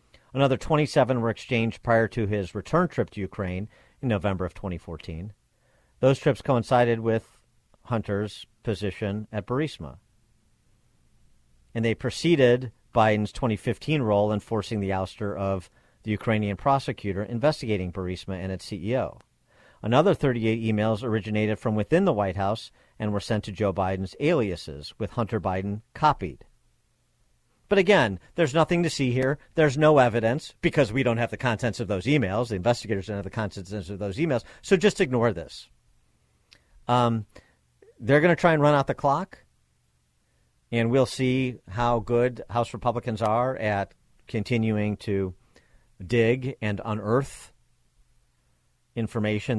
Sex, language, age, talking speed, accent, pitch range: male, English, 50-69, 145 wpm, American, 100-125 Hz